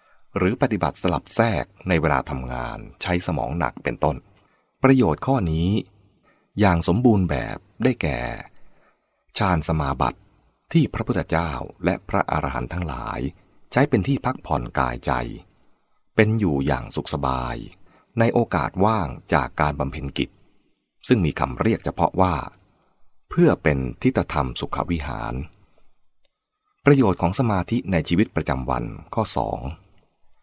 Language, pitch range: English, 70-110 Hz